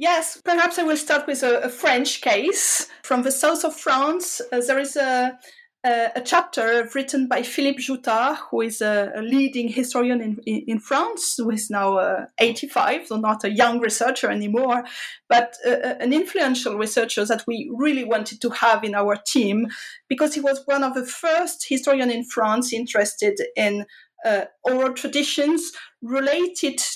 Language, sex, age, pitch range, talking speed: English, female, 30-49, 230-285 Hz, 165 wpm